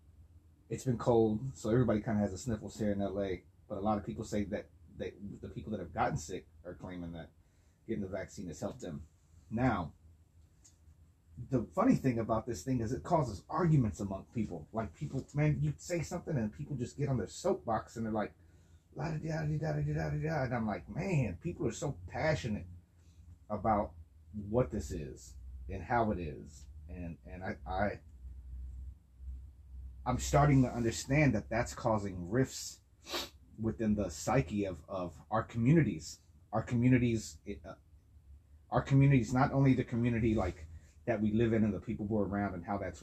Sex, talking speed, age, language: male, 185 wpm, 30-49, English